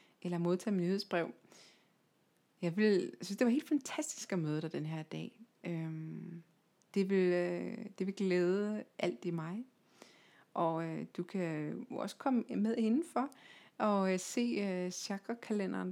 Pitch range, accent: 170-225 Hz, native